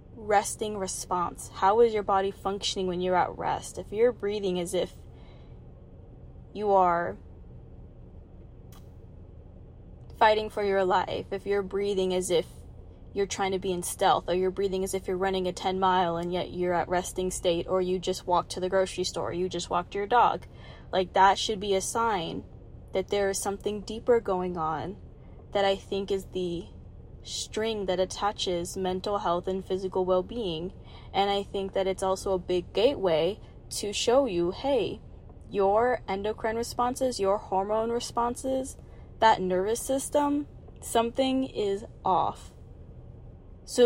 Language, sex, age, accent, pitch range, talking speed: English, female, 20-39, American, 175-205 Hz, 155 wpm